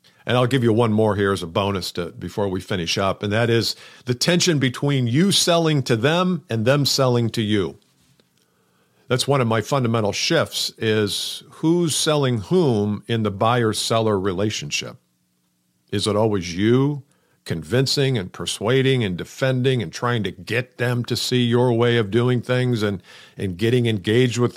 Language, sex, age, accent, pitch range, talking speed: English, male, 50-69, American, 110-135 Hz, 170 wpm